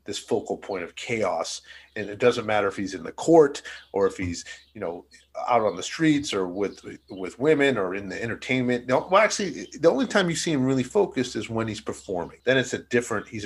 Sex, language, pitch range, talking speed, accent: male, English, 105-130 Hz, 225 wpm, American